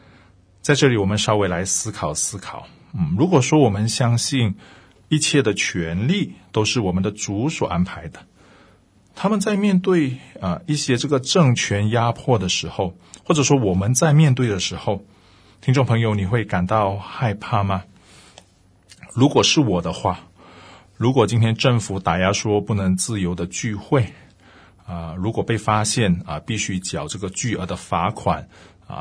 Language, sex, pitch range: Chinese, male, 90-115 Hz